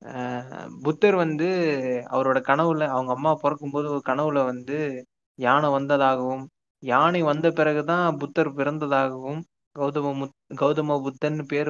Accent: native